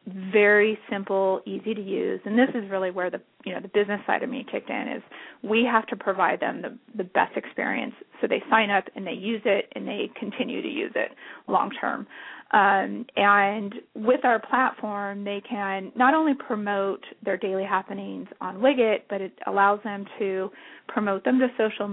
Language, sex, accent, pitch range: English, female, American, 195-255 Hz